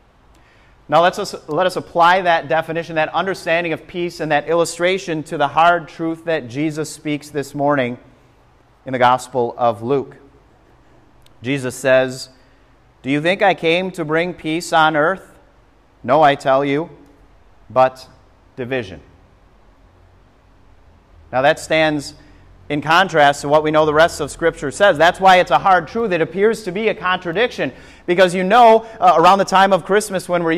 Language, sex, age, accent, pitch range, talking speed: English, male, 30-49, American, 130-180 Hz, 165 wpm